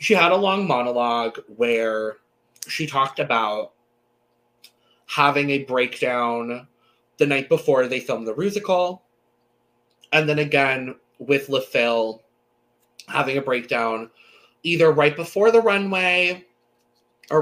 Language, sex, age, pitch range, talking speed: English, male, 20-39, 115-155 Hz, 115 wpm